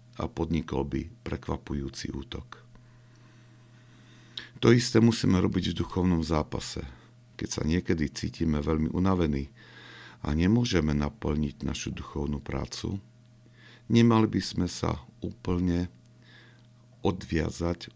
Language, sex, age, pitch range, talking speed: Slovak, male, 50-69, 75-120 Hz, 100 wpm